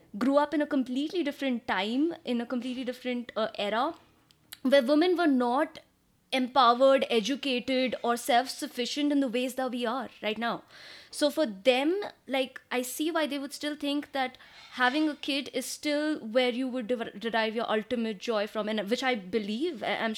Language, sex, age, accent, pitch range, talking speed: English, female, 20-39, Indian, 230-295 Hz, 180 wpm